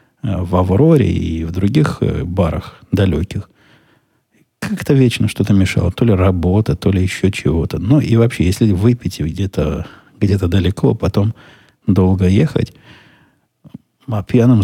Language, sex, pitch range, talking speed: Russian, male, 90-115 Hz, 125 wpm